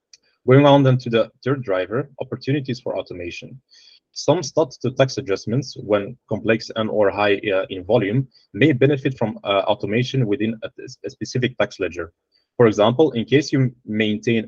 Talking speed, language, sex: 165 wpm, English, male